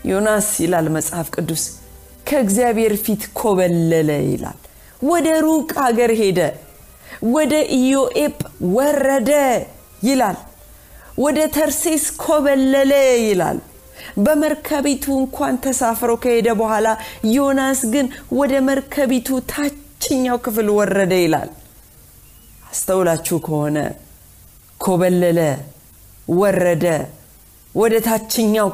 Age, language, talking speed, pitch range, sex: 40-59, Amharic, 75 wpm, 170-265 Hz, female